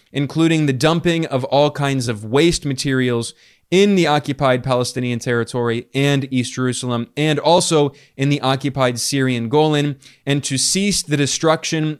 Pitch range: 130-160 Hz